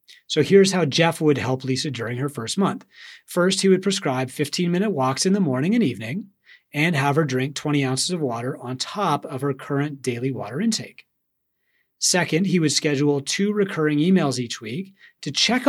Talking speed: 185 wpm